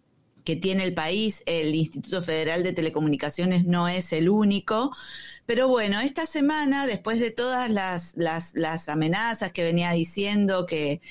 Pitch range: 170-225 Hz